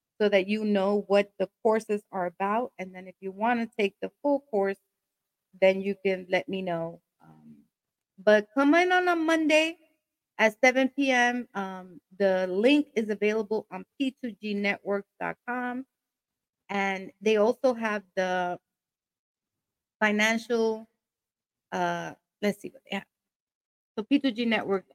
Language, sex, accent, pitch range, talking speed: English, female, American, 185-225 Hz, 135 wpm